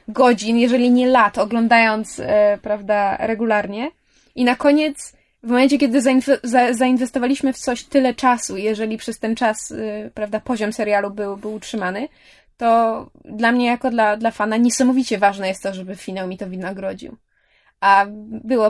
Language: Polish